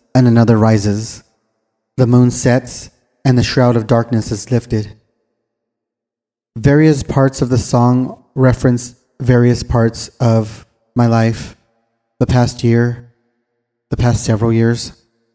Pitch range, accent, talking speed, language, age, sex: 115-130 Hz, American, 120 wpm, English, 20-39, male